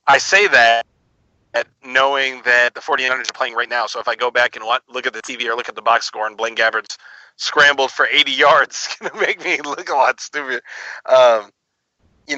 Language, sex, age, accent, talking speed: English, male, 40-59, American, 220 wpm